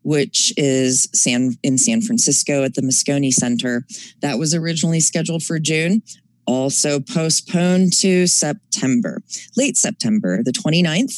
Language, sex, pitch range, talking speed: English, female, 135-180 Hz, 125 wpm